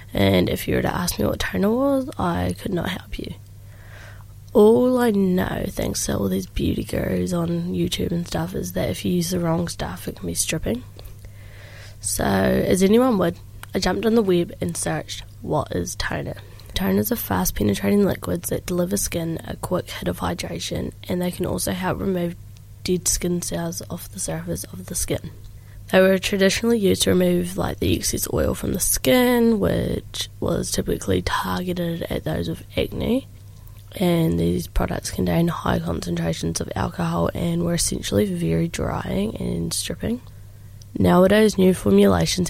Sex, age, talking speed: female, 20-39, 170 wpm